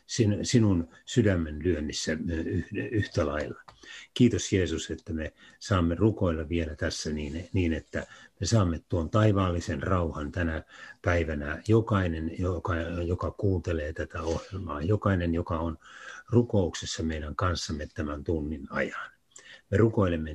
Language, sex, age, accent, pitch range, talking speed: Finnish, male, 60-79, native, 80-100 Hz, 115 wpm